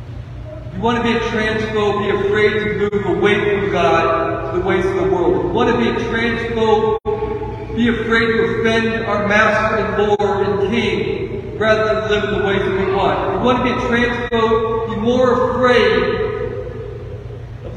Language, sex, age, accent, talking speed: English, male, 40-59, American, 180 wpm